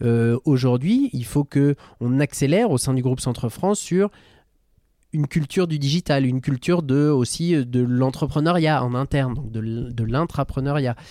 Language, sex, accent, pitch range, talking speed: French, male, French, 120-165 Hz, 150 wpm